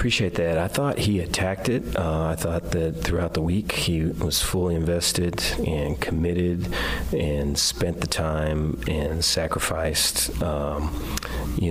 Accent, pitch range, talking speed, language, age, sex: American, 80-90 Hz, 145 wpm, English, 40-59, male